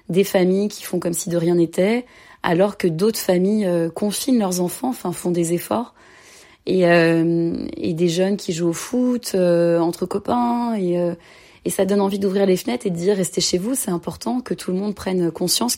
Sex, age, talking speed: female, 20-39, 220 wpm